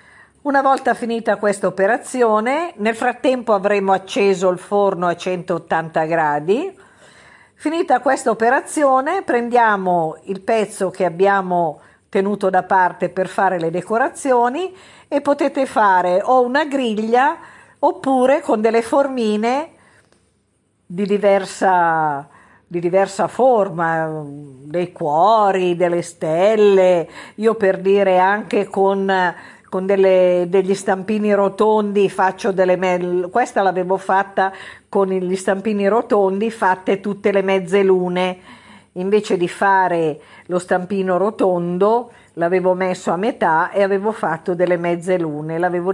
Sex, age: female, 50-69